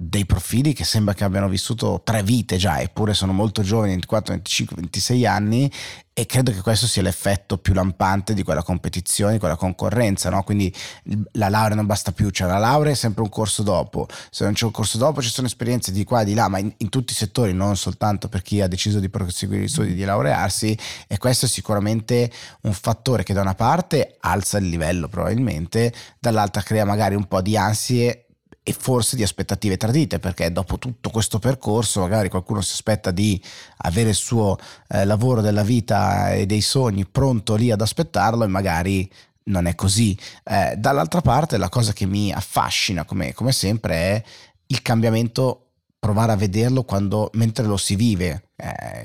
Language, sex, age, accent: Italian, male, 30-49, native